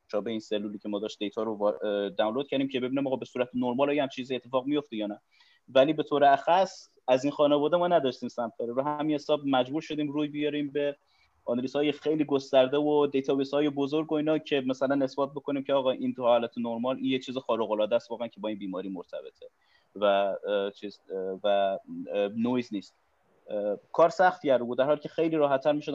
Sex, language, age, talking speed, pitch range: male, Persian, 30-49, 195 wpm, 110-145 Hz